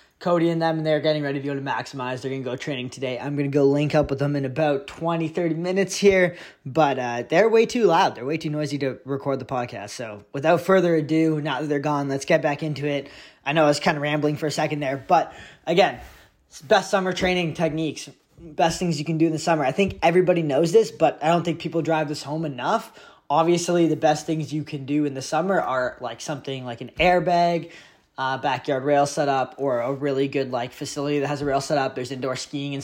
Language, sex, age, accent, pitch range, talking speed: English, male, 20-39, American, 140-170 Hz, 240 wpm